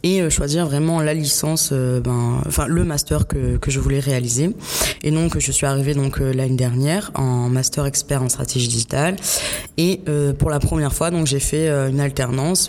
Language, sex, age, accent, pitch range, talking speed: French, female, 20-39, French, 130-155 Hz, 190 wpm